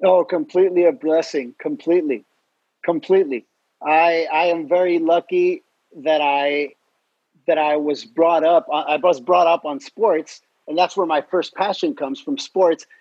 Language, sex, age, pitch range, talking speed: English, male, 40-59, 160-210 Hz, 150 wpm